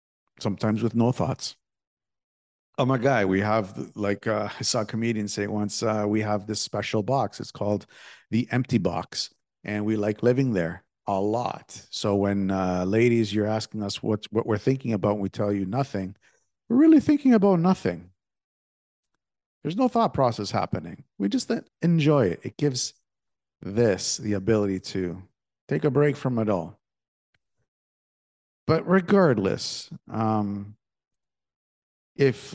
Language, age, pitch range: English, 50-69, 100-120 Hz